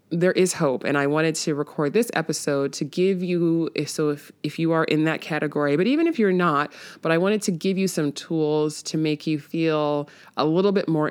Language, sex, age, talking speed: English, female, 20-39, 225 wpm